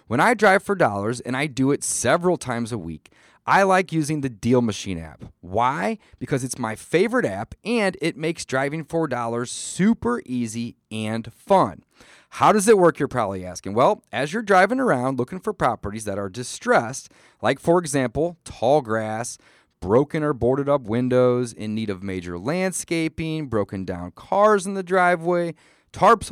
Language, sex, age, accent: English, male, 30-49, American